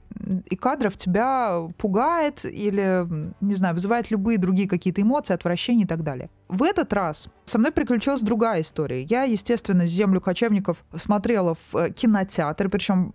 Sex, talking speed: female, 145 wpm